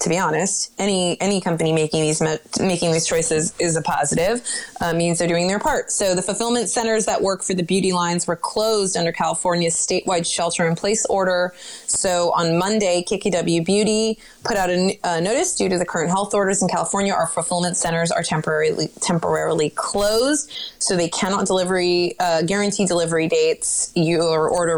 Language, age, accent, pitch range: English, 20-39, American, 165-205 Hz